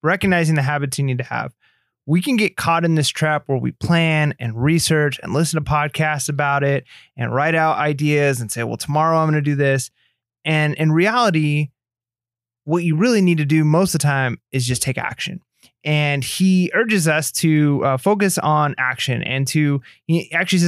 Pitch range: 135-165 Hz